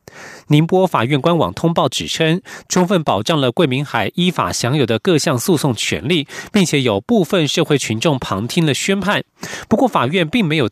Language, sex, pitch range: Chinese, male, 135-185 Hz